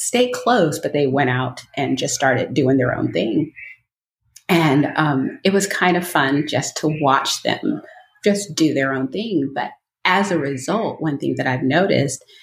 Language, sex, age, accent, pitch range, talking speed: English, female, 30-49, American, 140-180 Hz, 185 wpm